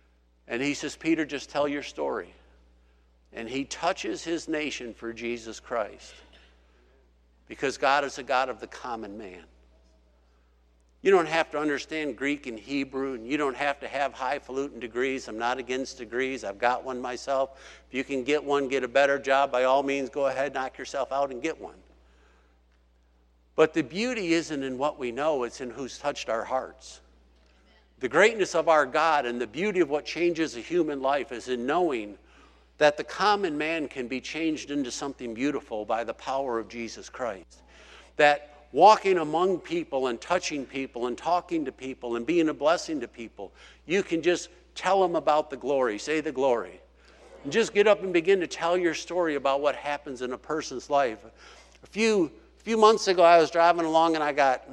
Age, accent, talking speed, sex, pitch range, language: 60-79, American, 190 wpm, male, 115-160 Hz, English